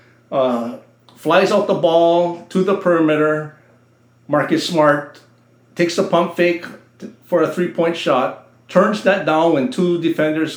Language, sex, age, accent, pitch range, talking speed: English, male, 50-69, American, 115-155 Hz, 135 wpm